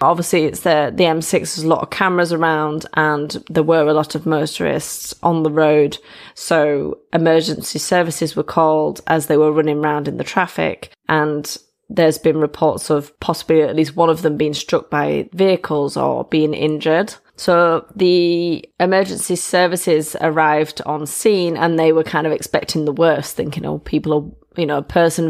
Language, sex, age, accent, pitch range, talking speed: English, female, 20-39, British, 155-175 Hz, 180 wpm